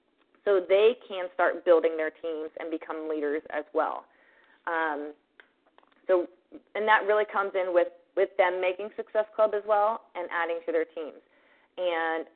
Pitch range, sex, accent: 170-210 Hz, female, American